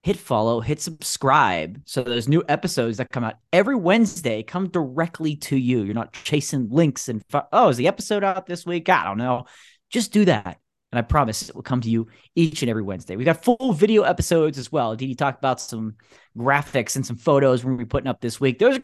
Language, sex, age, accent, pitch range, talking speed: English, male, 30-49, American, 125-185 Hz, 235 wpm